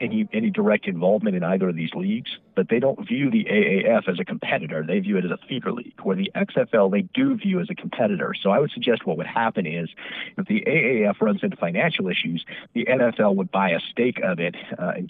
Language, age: English, 50-69